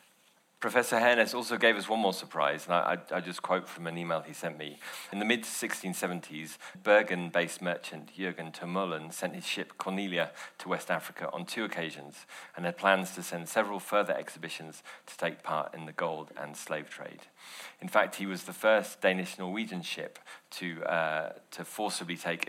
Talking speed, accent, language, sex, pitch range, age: 175 wpm, British, English, male, 85-95 Hz, 40-59